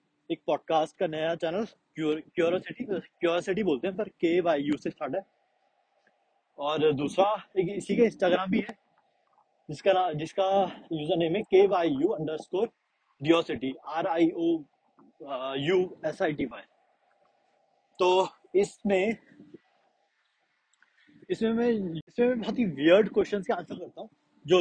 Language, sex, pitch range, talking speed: Hindi, male, 155-200 Hz, 65 wpm